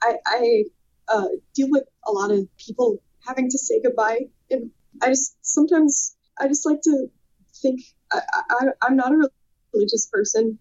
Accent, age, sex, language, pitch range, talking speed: American, 20-39, female, English, 225-285 Hz, 165 wpm